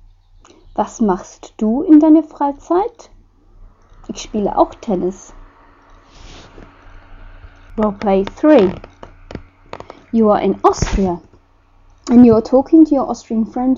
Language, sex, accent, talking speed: English, female, German, 115 wpm